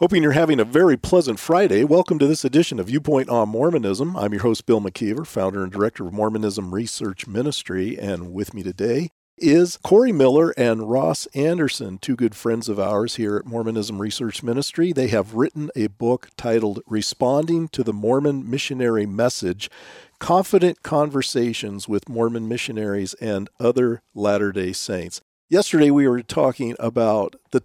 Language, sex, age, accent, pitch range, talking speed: English, male, 50-69, American, 105-140 Hz, 160 wpm